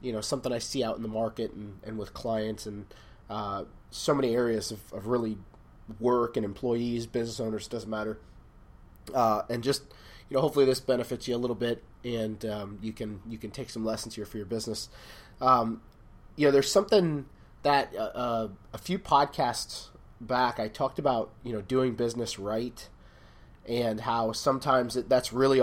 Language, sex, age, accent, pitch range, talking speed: English, male, 30-49, American, 110-130 Hz, 185 wpm